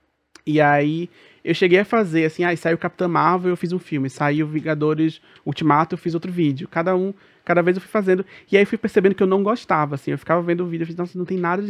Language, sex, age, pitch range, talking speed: Portuguese, male, 20-39, 150-180 Hz, 250 wpm